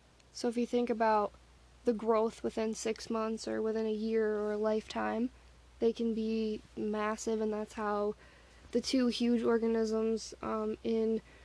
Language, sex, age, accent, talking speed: English, female, 10-29, American, 155 wpm